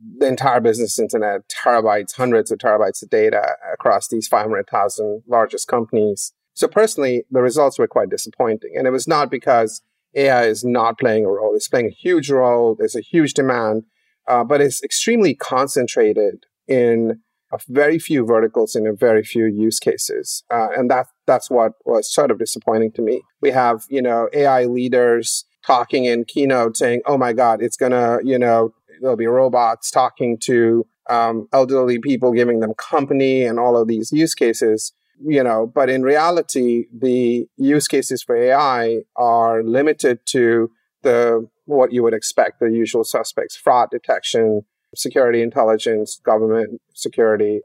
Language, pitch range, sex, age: English, 115-140 Hz, male, 30-49